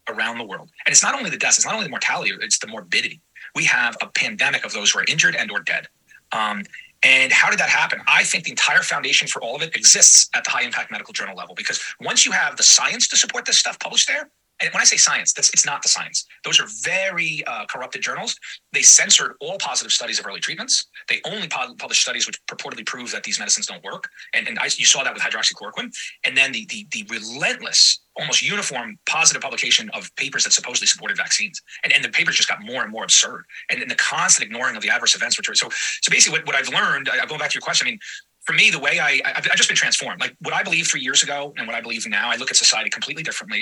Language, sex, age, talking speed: English, male, 30-49, 255 wpm